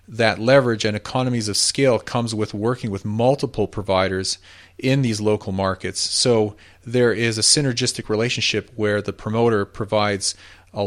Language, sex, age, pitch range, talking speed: English, male, 40-59, 95-115 Hz, 150 wpm